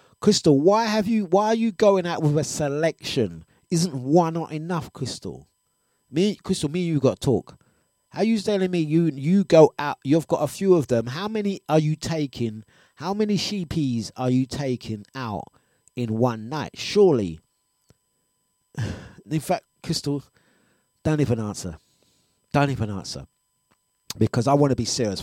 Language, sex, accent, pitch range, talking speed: English, male, British, 115-165 Hz, 170 wpm